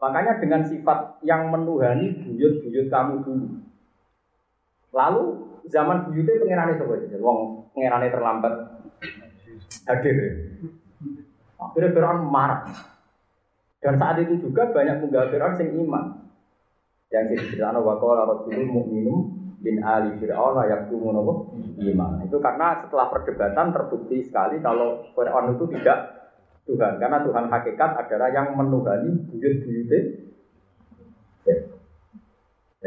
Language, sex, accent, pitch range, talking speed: Indonesian, male, native, 110-165 Hz, 80 wpm